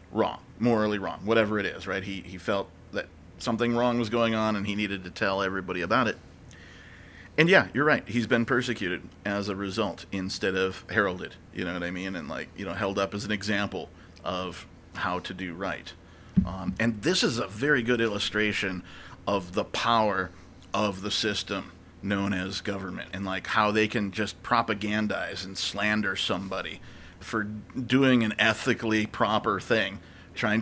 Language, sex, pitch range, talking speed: English, male, 95-115 Hz, 175 wpm